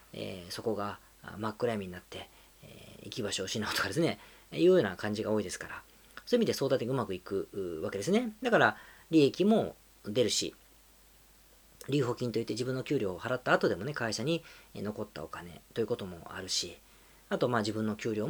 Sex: female